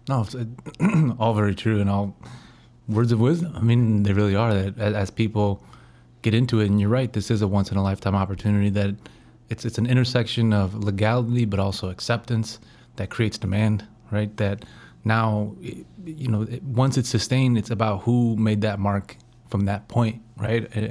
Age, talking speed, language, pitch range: 20-39, 190 wpm, English, 100-120 Hz